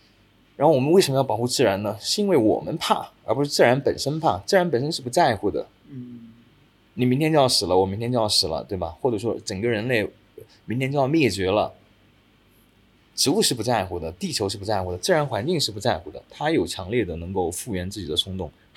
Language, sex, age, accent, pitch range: Chinese, male, 20-39, native, 100-140 Hz